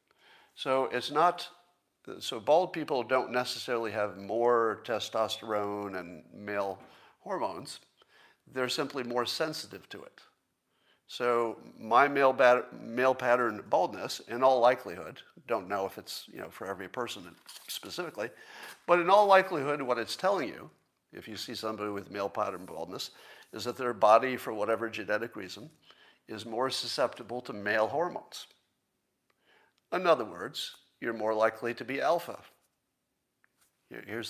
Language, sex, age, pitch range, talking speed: English, male, 50-69, 110-130 Hz, 140 wpm